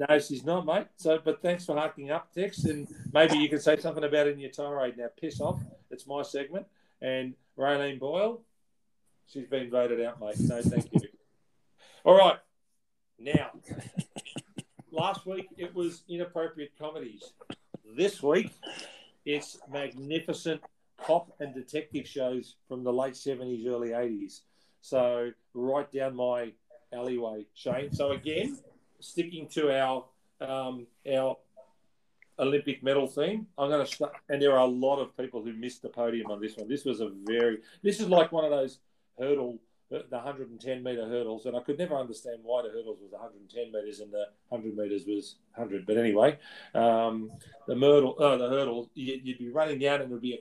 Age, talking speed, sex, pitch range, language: 40-59, 175 wpm, male, 125-155 Hz, English